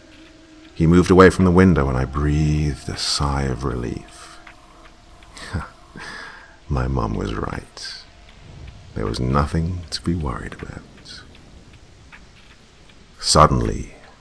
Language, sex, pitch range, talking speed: English, male, 70-85 Hz, 105 wpm